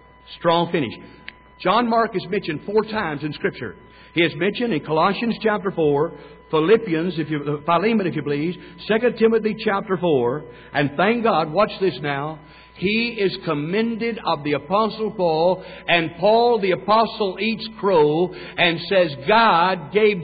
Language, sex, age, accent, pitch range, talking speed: English, male, 60-79, American, 170-225 Hz, 150 wpm